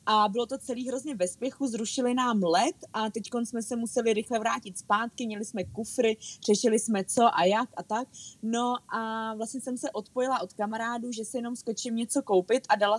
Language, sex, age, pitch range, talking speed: Czech, female, 20-39, 210-245 Hz, 200 wpm